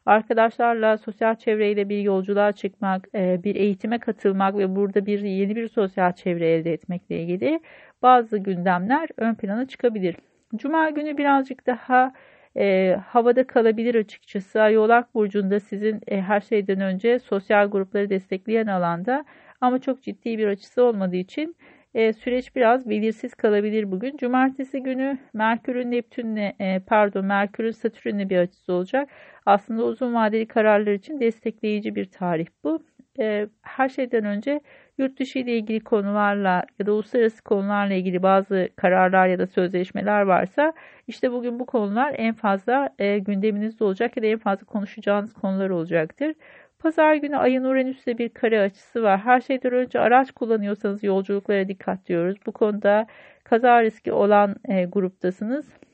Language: Turkish